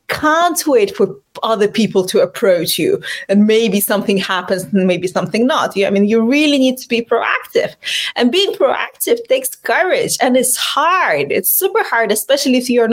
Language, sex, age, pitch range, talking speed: Hindi, female, 30-49, 205-275 Hz, 185 wpm